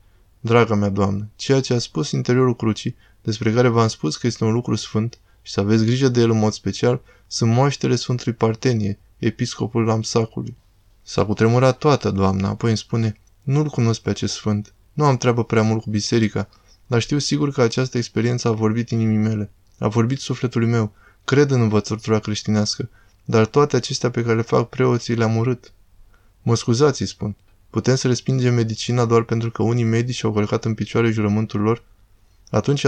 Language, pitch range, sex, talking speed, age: Romanian, 105-120 Hz, male, 185 wpm, 20-39